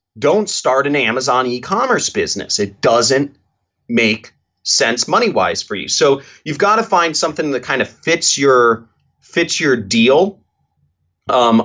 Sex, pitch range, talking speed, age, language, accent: male, 115-145 Hz, 145 wpm, 30-49, English, American